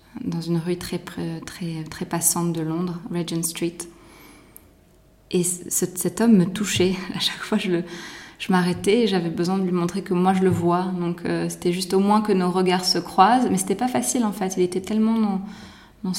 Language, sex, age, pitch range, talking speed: French, female, 20-39, 170-195 Hz, 215 wpm